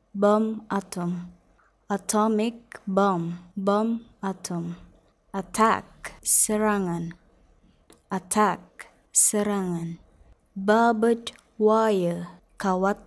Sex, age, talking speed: female, 20-39, 60 wpm